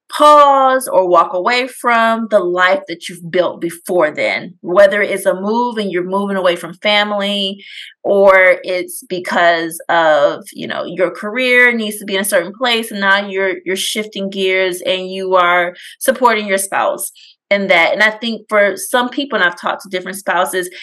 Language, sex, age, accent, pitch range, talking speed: English, female, 20-39, American, 185-235 Hz, 180 wpm